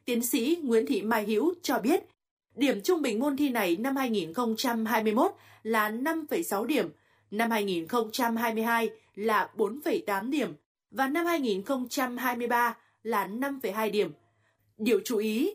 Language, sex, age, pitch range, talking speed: Vietnamese, female, 20-39, 220-275 Hz, 125 wpm